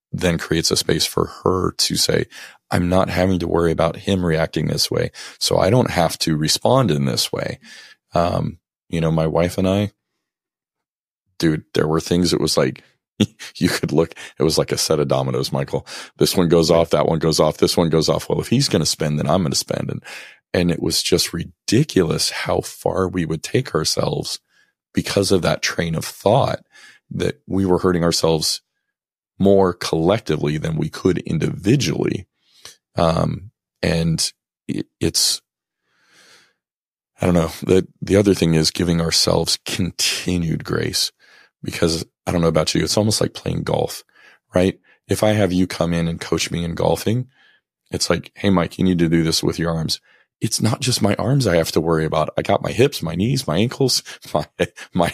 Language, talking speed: English, 190 wpm